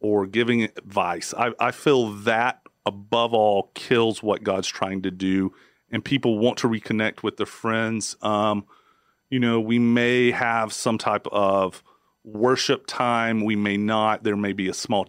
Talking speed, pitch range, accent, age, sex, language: 165 wpm, 105-125 Hz, American, 40-59, male, English